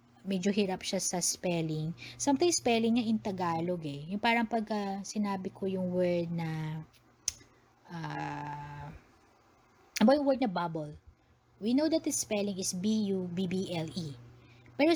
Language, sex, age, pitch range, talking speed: Filipino, female, 20-39, 160-225 Hz, 130 wpm